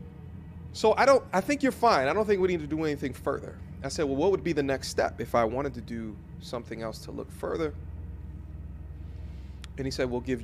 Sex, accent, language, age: male, American, English, 30-49